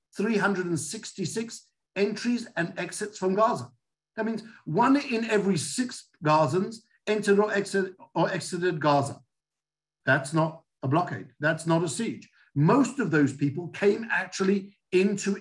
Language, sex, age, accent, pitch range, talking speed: English, male, 50-69, British, 145-195 Hz, 130 wpm